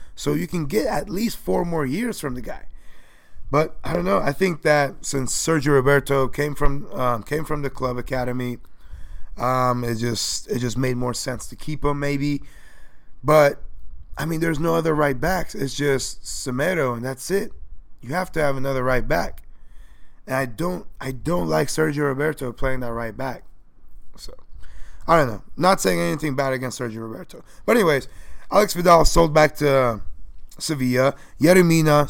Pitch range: 125-160 Hz